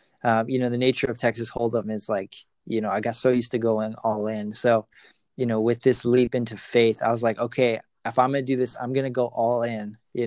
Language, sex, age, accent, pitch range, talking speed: English, male, 20-39, American, 110-125 Hz, 265 wpm